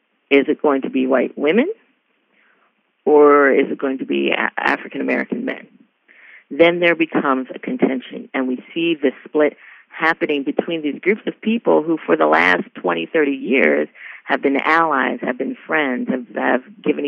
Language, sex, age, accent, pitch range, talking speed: English, female, 40-59, American, 135-170 Hz, 165 wpm